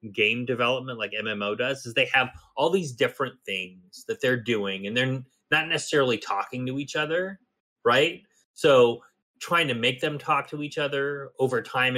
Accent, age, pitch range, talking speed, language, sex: American, 30-49, 120-165 Hz, 175 wpm, English, male